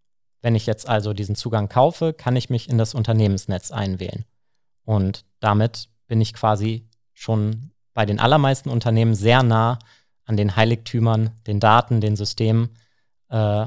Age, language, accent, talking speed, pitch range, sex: 30-49, German, German, 150 wpm, 110-125 Hz, male